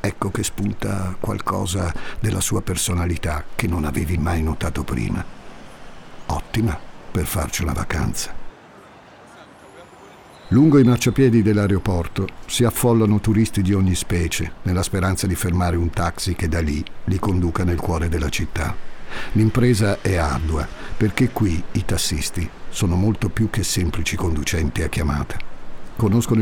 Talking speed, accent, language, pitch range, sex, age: 135 wpm, native, Italian, 85-110 Hz, male, 50-69